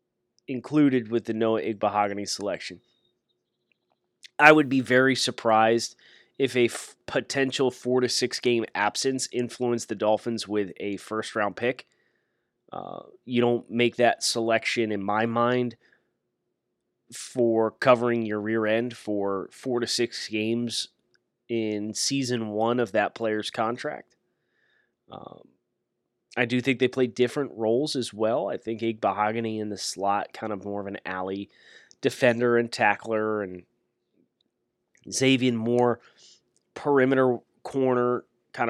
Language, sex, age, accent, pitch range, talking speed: English, male, 20-39, American, 105-125 Hz, 130 wpm